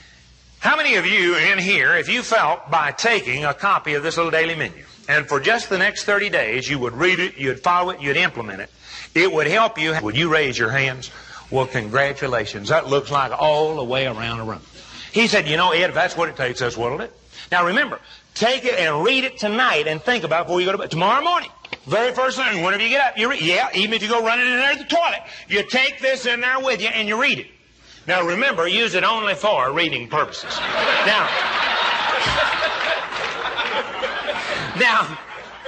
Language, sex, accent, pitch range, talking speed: English, male, American, 135-215 Hz, 215 wpm